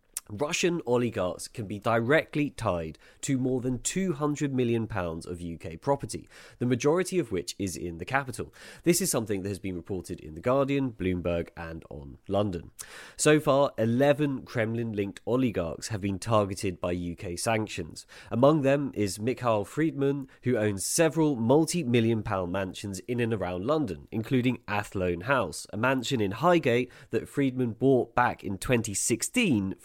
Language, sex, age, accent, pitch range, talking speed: English, male, 30-49, British, 95-140 Hz, 155 wpm